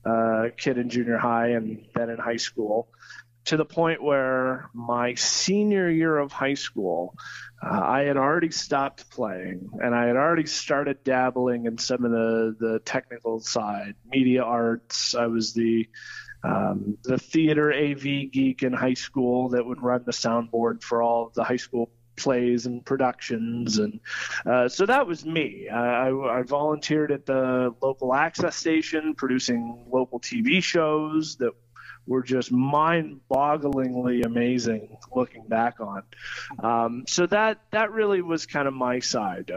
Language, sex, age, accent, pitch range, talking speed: English, male, 30-49, American, 115-140 Hz, 155 wpm